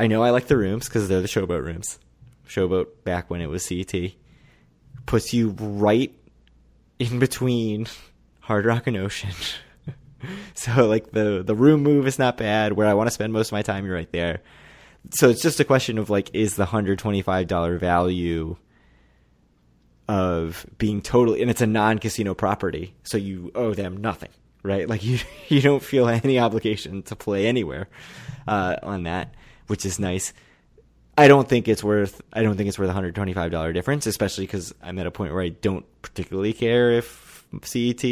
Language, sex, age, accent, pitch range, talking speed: English, male, 20-39, American, 90-115 Hz, 180 wpm